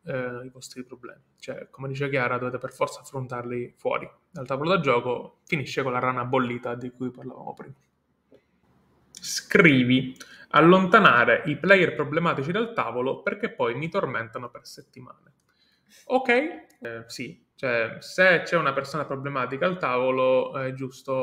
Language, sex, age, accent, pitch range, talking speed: Italian, male, 20-39, native, 130-180 Hz, 145 wpm